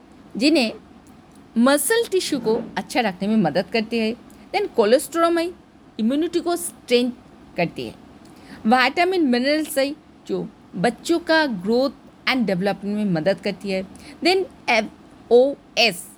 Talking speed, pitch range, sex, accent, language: 130 wpm, 210-275 Hz, female, native, Hindi